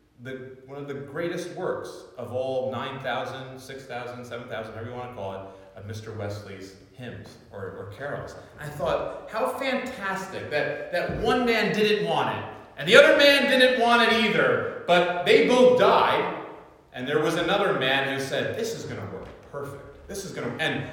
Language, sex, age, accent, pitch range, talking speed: English, male, 30-49, American, 145-225 Hz, 185 wpm